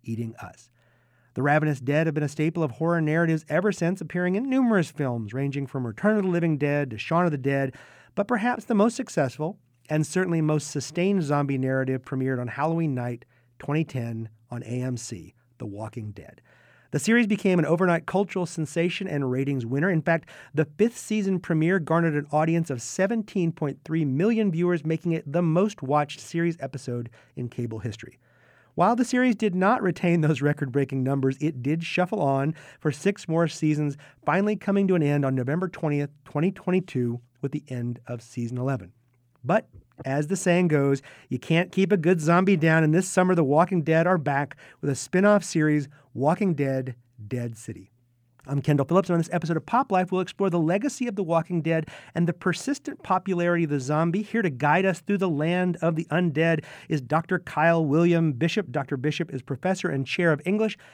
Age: 40-59